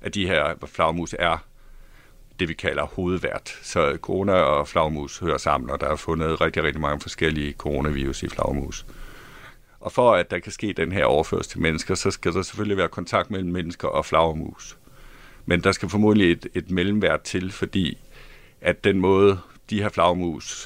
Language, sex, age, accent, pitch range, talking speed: Danish, male, 60-79, native, 85-100 Hz, 180 wpm